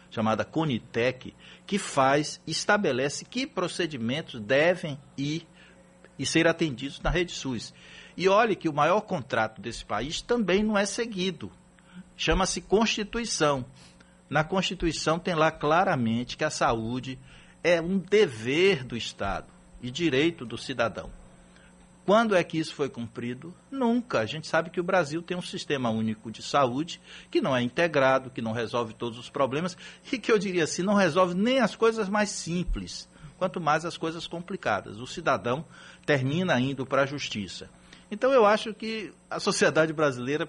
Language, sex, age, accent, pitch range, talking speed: Portuguese, male, 60-79, Brazilian, 125-185 Hz, 155 wpm